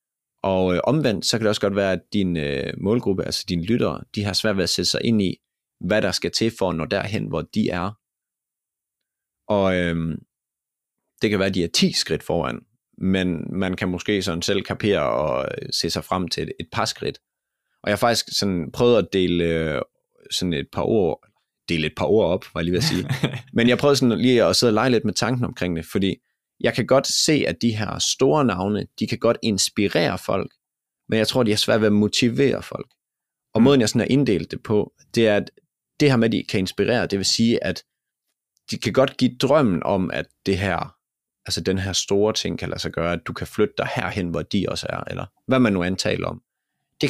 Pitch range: 90-115 Hz